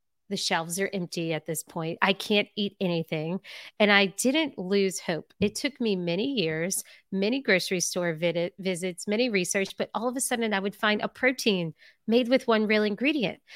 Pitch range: 195-255 Hz